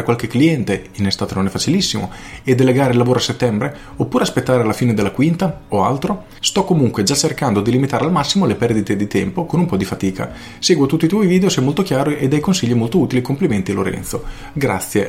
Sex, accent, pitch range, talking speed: male, native, 95-130 Hz, 220 wpm